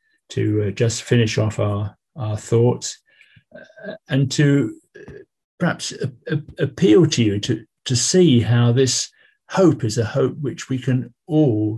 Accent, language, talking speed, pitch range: British, English, 160 wpm, 110-135 Hz